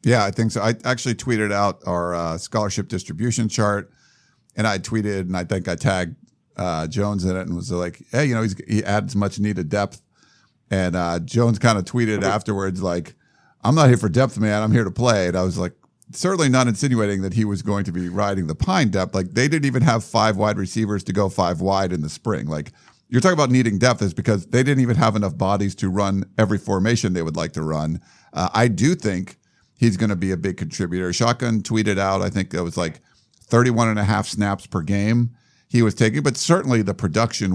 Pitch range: 95-115 Hz